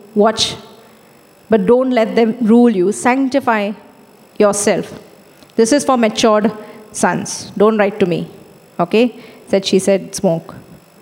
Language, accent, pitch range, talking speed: English, Indian, 220-265 Hz, 125 wpm